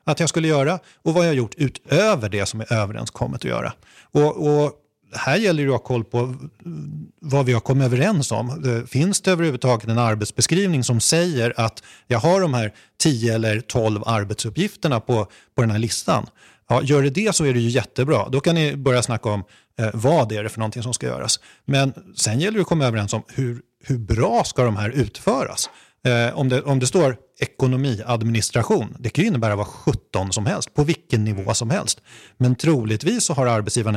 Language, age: Swedish, 30-49